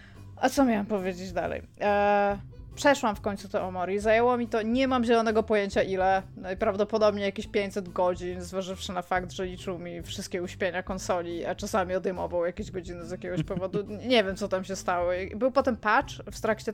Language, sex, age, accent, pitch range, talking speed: Polish, female, 20-39, native, 185-220 Hz, 180 wpm